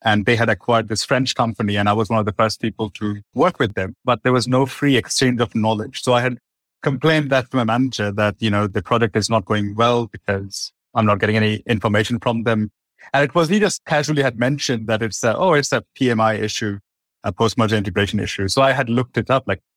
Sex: male